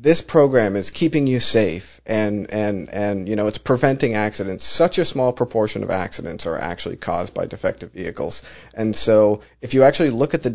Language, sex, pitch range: English, male, 105-140 Hz